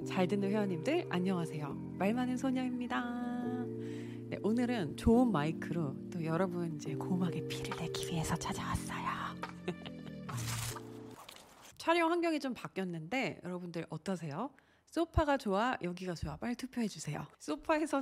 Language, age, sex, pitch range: Korean, 30-49, female, 160-240 Hz